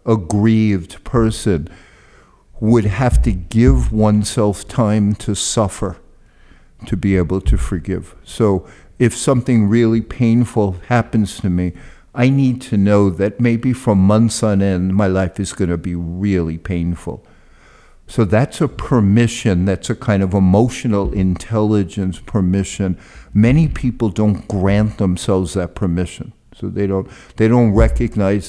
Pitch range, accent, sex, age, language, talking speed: 95-115 Hz, American, male, 50-69, English, 140 wpm